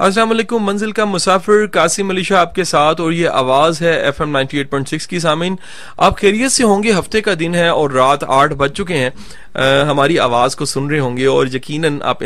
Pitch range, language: 130-170 Hz, English